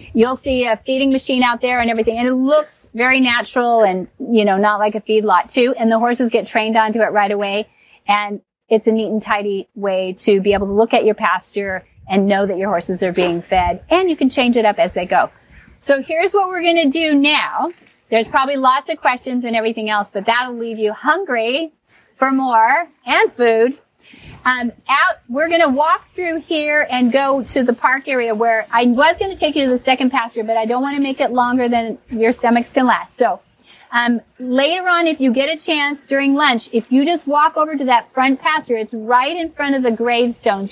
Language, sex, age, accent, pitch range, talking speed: English, female, 40-59, American, 220-270 Hz, 225 wpm